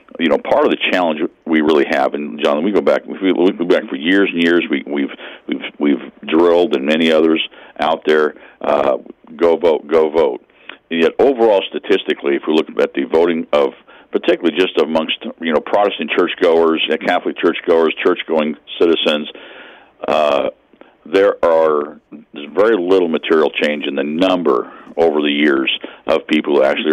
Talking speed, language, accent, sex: 170 wpm, English, American, male